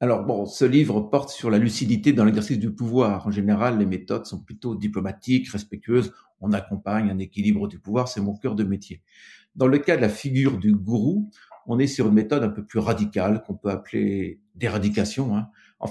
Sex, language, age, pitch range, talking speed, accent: male, French, 50-69, 105-140 Hz, 205 wpm, French